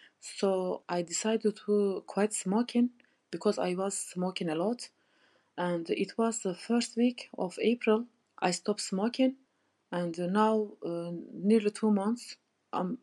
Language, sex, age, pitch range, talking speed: English, female, 30-49, 185-230 Hz, 140 wpm